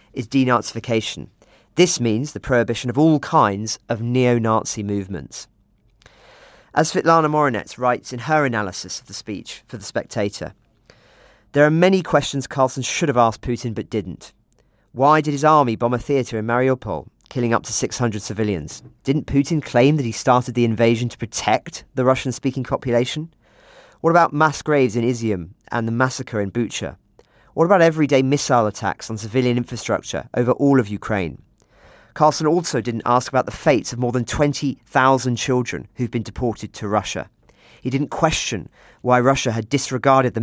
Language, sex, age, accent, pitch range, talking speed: English, male, 40-59, British, 110-140 Hz, 170 wpm